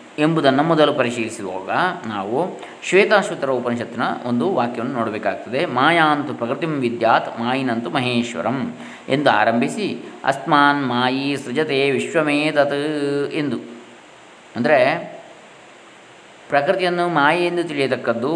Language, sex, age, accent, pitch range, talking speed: Kannada, male, 20-39, native, 120-145 Hz, 85 wpm